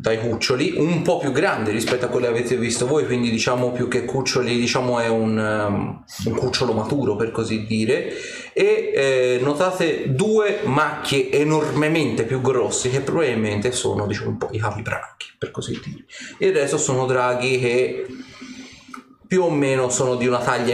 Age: 30-49